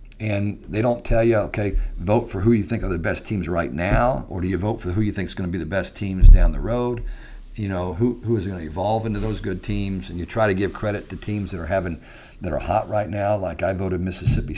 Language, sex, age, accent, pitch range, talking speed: English, male, 50-69, American, 90-105 Hz, 275 wpm